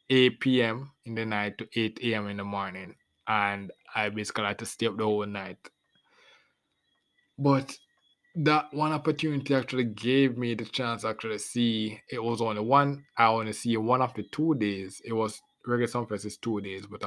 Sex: male